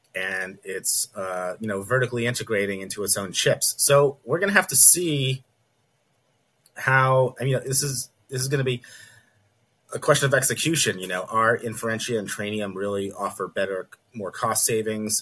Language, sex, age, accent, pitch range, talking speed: English, male, 30-49, American, 100-125 Hz, 180 wpm